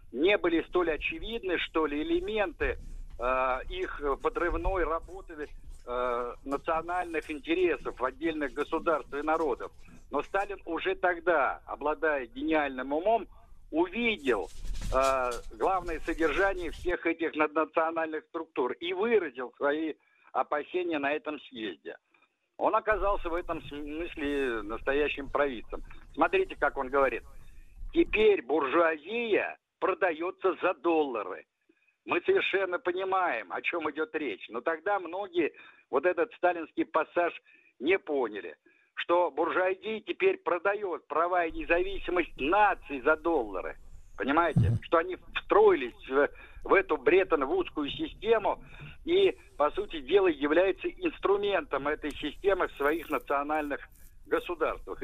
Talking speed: 110 wpm